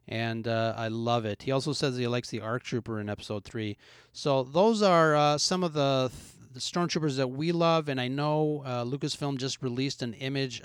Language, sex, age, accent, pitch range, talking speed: English, male, 30-49, American, 120-145 Hz, 215 wpm